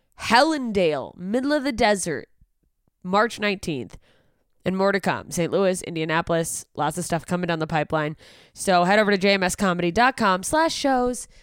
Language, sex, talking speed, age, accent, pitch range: English, female, 145 wpm, 20-39, American, 155-195 Hz